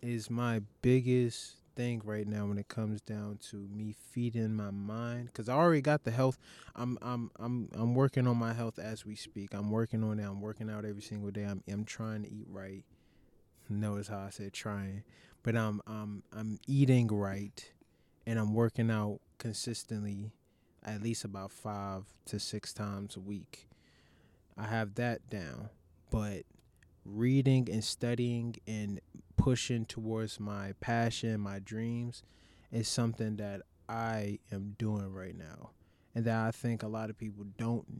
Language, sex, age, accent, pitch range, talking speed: English, male, 20-39, American, 105-120 Hz, 165 wpm